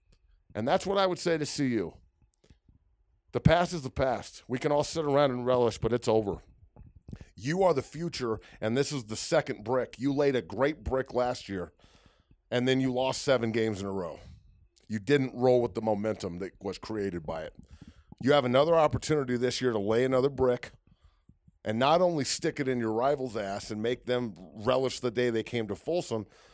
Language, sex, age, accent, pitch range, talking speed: English, male, 40-59, American, 110-140 Hz, 200 wpm